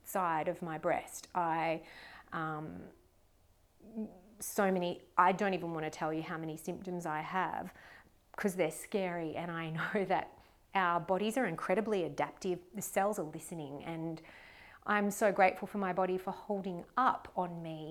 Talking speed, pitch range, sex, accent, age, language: 160 wpm, 170-200 Hz, female, Australian, 30-49, English